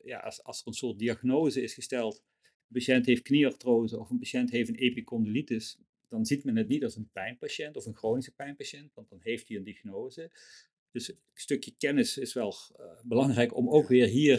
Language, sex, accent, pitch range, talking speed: Dutch, male, Dutch, 110-130 Hz, 205 wpm